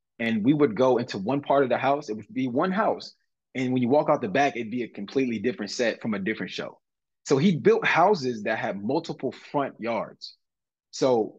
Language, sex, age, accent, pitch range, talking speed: English, male, 20-39, American, 110-155 Hz, 220 wpm